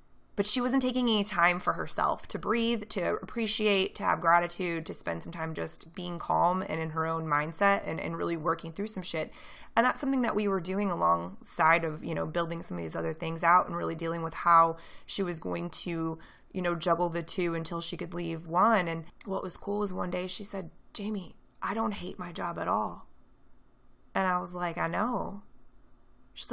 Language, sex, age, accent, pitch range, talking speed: English, female, 20-39, American, 160-195 Hz, 215 wpm